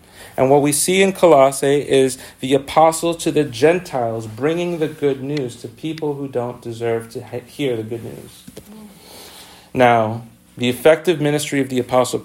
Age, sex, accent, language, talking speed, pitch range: 40-59, male, American, English, 160 wpm, 125-165 Hz